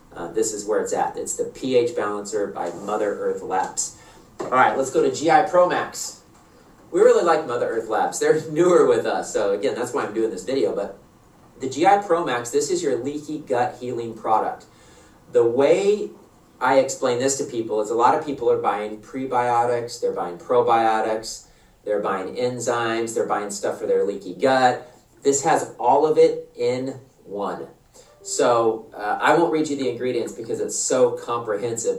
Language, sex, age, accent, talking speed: English, male, 40-59, American, 180 wpm